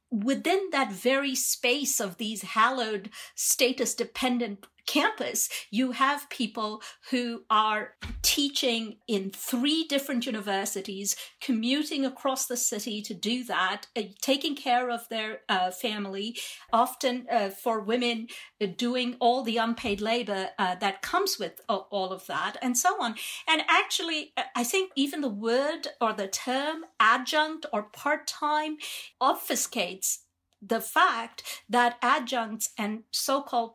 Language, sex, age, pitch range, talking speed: English, female, 50-69, 215-280 Hz, 130 wpm